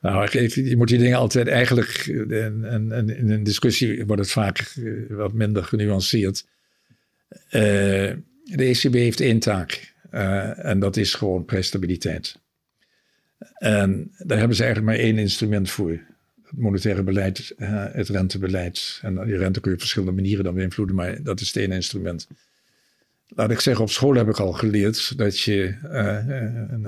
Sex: male